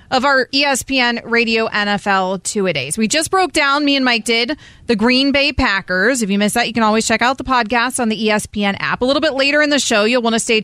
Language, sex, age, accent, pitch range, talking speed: English, female, 30-49, American, 210-265 Hz, 250 wpm